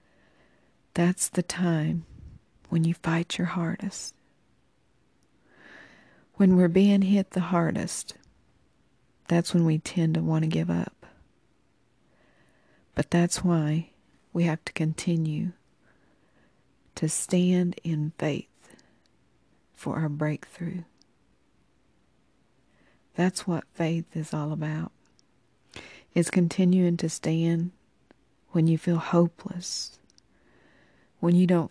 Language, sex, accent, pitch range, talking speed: English, female, American, 155-180 Hz, 100 wpm